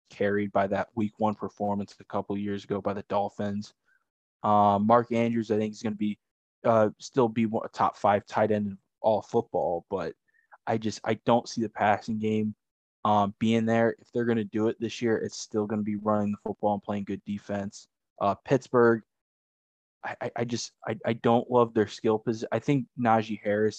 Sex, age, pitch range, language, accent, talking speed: male, 20-39, 100-115 Hz, English, American, 210 wpm